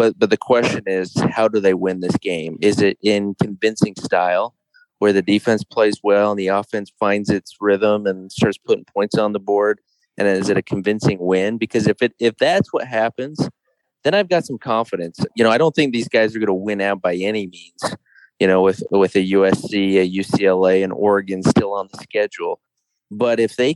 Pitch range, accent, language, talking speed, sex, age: 100-135 Hz, American, English, 210 wpm, male, 30-49